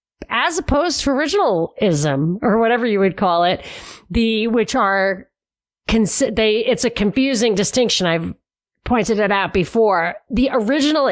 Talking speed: 135 wpm